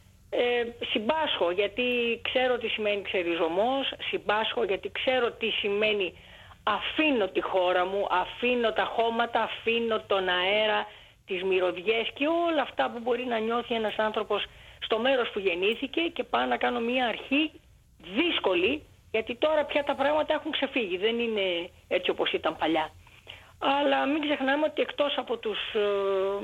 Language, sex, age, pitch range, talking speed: Dutch, female, 30-49, 195-270 Hz, 145 wpm